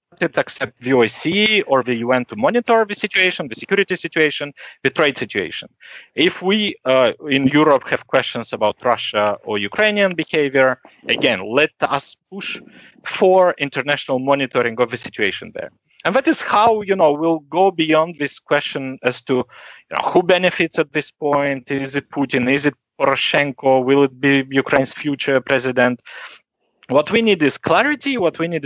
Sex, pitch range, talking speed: male, 135-185 Hz, 165 wpm